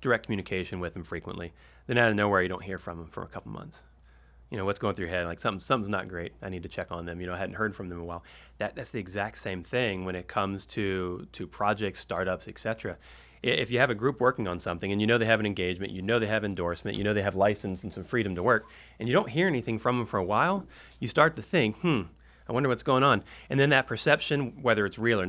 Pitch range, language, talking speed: 95-120 Hz, English, 280 wpm